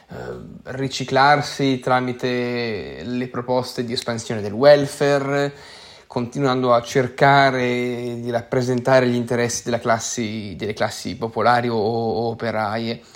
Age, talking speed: 20-39, 95 wpm